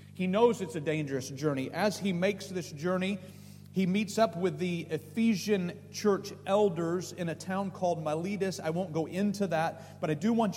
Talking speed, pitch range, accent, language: 185 wpm, 155-195 Hz, American, English